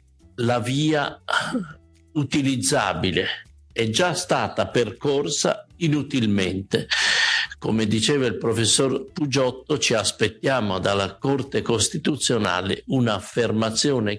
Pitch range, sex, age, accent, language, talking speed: 100-135 Hz, male, 50-69, native, Italian, 80 wpm